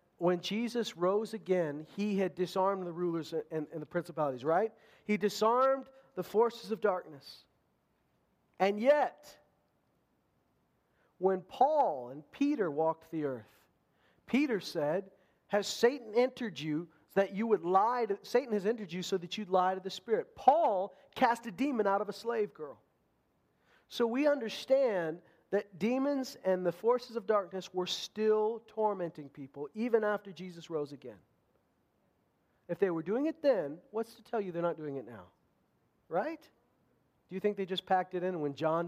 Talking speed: 165 wpm